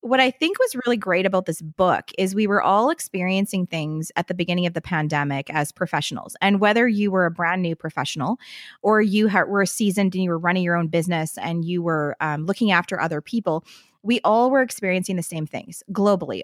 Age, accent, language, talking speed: 20-39, American, English, 210 wpm